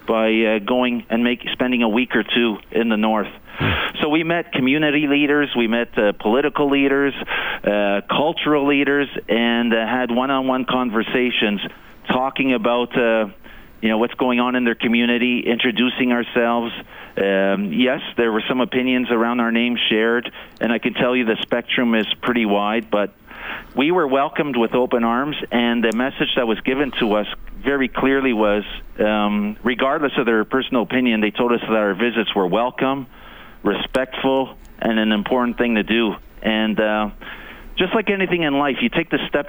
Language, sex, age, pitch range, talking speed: English, male, 40-59, 115-135 Hz, 175 wpm